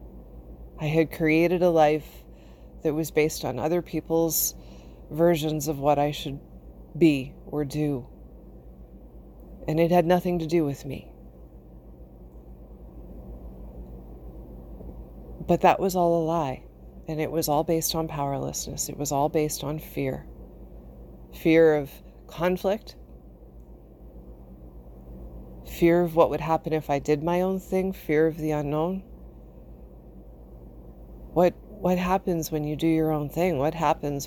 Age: 40-59